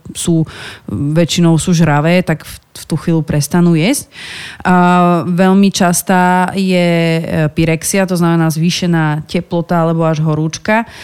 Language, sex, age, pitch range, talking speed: Slovak, female, 30-49, 145-170 Hz, 125 wpm